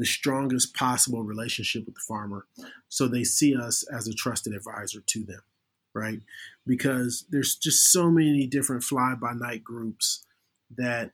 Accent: American